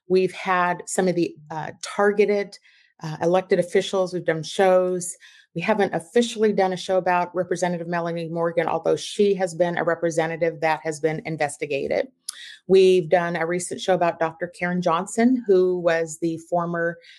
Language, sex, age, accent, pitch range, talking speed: English, female, 30-49, American, 170-195 Hz, 160 wpm